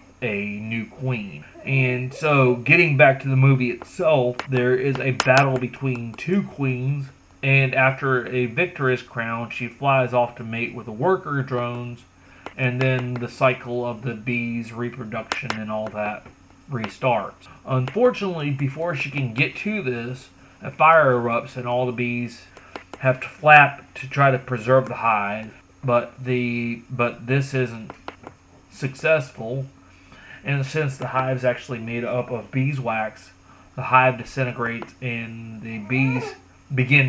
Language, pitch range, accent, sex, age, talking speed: English, 120-135 Hz, American, male, 30-49, 145 wpm